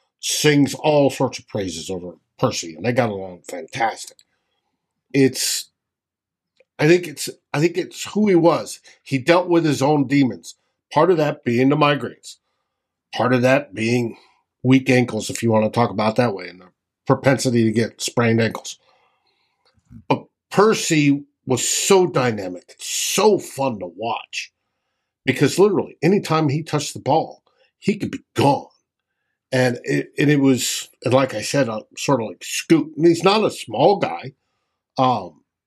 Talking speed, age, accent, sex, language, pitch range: 160 wpm, 50-69, American, male, English, 120-160 Hz